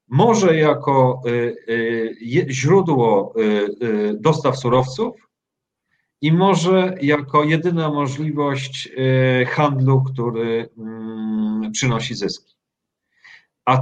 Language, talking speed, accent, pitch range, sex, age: Polish, 65 wpm, native, 135-165 Hz, male, 40-59